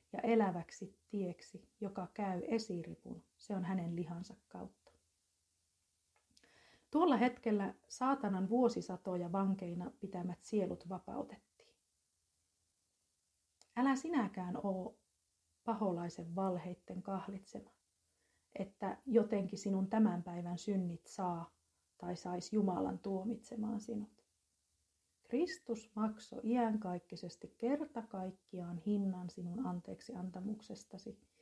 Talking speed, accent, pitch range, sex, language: 85 wpm, native, 175-225 Hz, female, Finnish